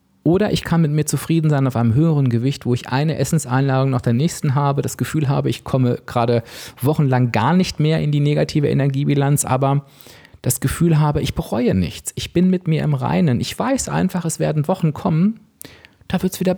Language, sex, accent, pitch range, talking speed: German, male, German, 120-150 Hz, 205 wpm